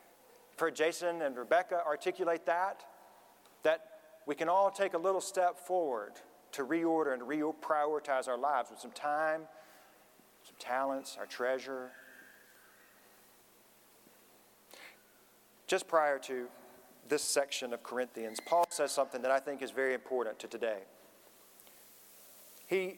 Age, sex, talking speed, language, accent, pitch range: 40-59, male, 125 wpm, English, American, 135-180 Hz